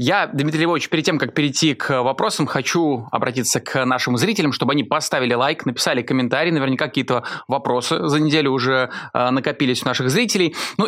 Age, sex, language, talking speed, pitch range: 20-39, male, Russian, 175 wpm, 125-160 Hz